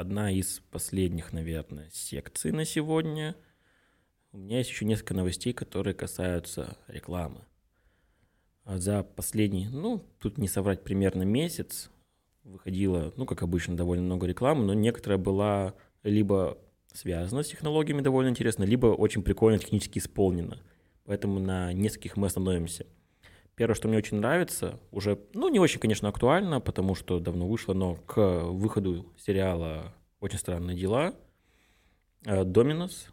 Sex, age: male, 20-39